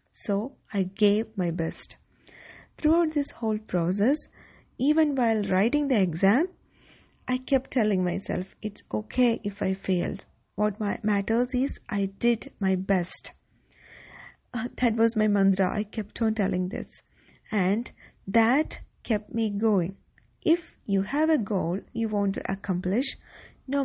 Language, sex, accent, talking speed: English, female, Indian, 140 wpm